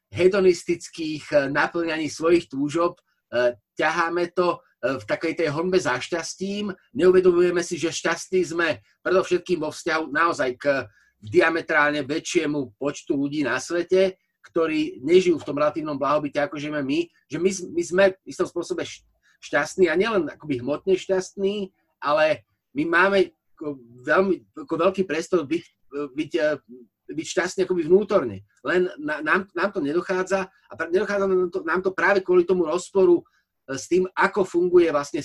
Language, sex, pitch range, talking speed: Slovak, male, 150-190 Hz, 145 wpm